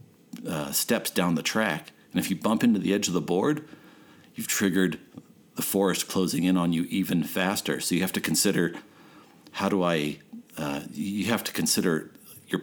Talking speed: 185 wpm